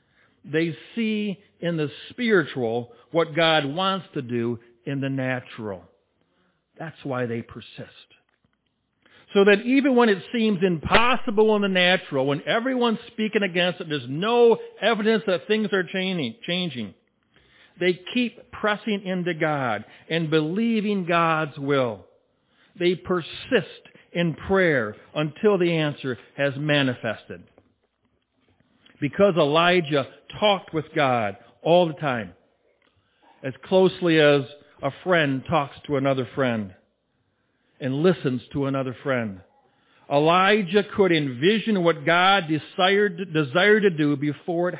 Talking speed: 120 wpm